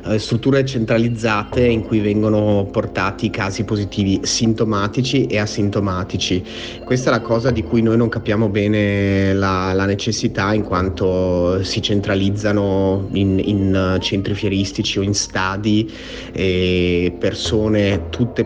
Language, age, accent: Italian, 30-49, native